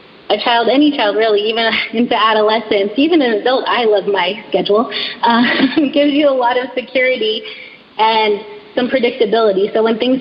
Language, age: English, 20-39